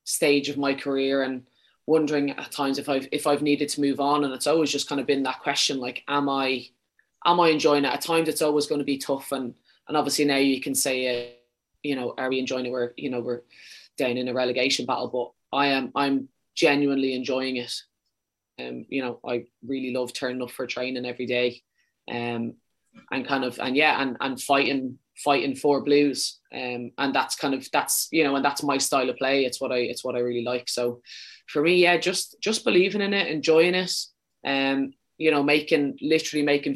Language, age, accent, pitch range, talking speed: English, 20-39, Irish, 125-145 Hz, 220 wpm